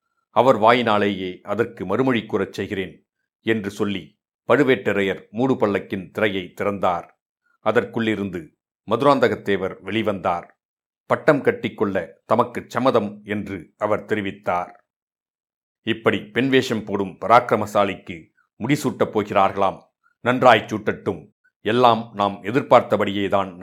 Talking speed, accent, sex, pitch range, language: 90 wpm, native, male, 100-125 Hz, Tamil